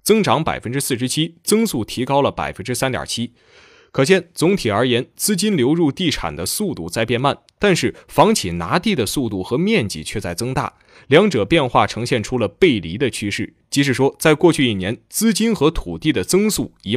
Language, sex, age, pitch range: Chinese, male, 20-39, 115-165 Hz